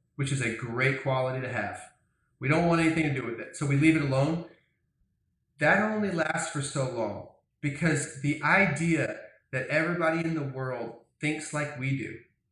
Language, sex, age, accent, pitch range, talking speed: English, male, 30-49, American, 120-155 Hz, 180 wpm